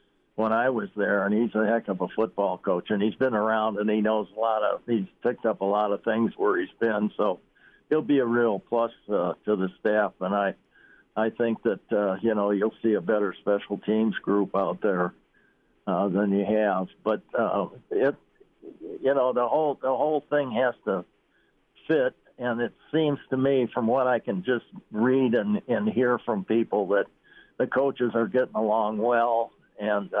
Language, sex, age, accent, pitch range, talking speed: English, male, 60-79, American, 105-125 Hz, 200 wpm